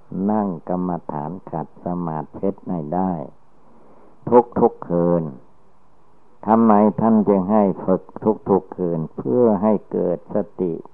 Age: 60-79